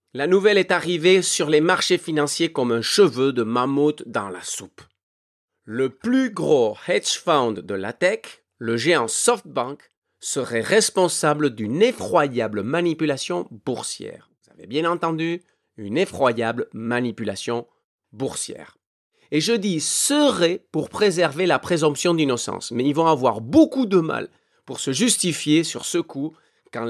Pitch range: 130-190 Hz